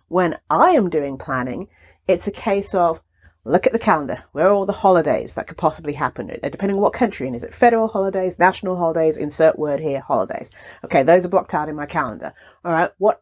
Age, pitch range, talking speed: 40-59, 155-220 Hz, 225 wpm